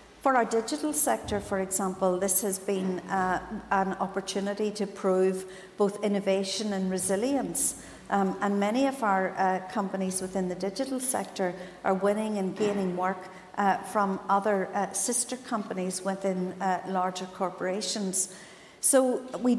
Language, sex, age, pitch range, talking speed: English, female, 50-69, 195-230 Hz, 140 wpm